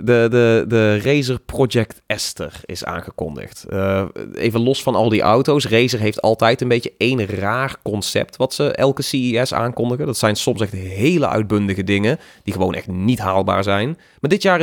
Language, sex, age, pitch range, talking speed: Dutch, male, 30-49, 100-130 Hz, 175 wpm